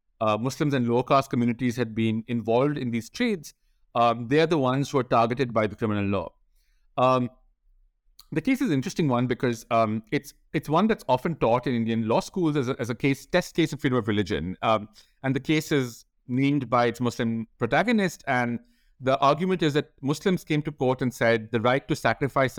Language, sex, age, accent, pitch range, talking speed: English, male, 50-69, Indian, 115-150 Hz, 210 wpm